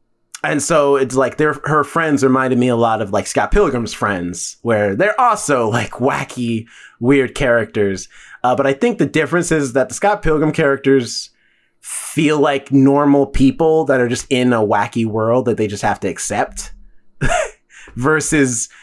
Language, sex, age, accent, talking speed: English, male, 30-49, American, 170 wpm